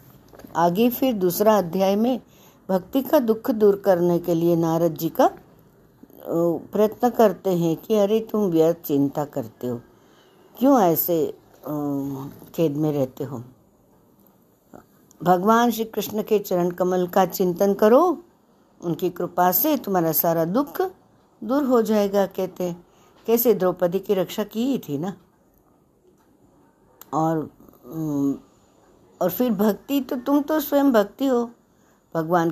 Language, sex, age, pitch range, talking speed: Hindi, female, 60-79, 175-235 Hz, 125 wpm